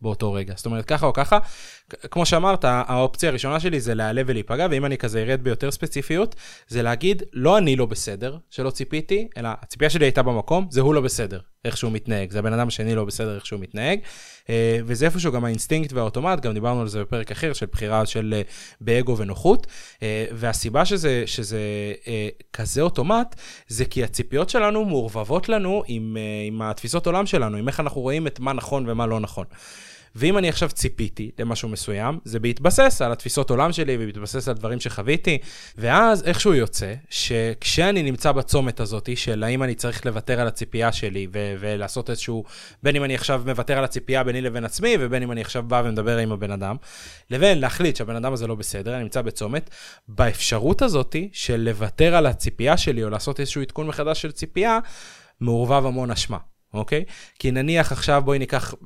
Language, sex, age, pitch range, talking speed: Hebrew, male, 20-39, 110-145 Hz, 165 wpm